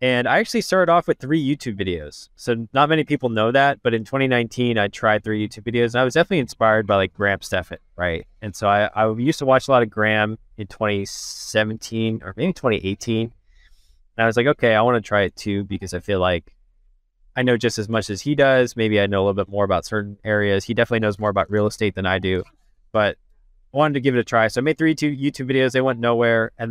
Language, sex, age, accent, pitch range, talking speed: English, male, 20-39, American, 100-125 Hz, 245 wpm